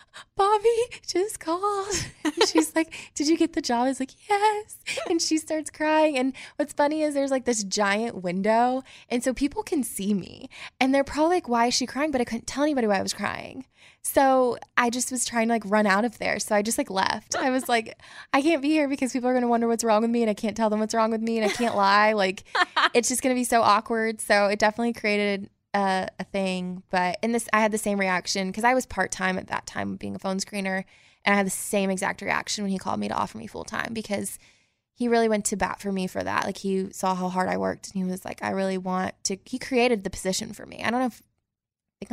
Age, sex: 20-39, female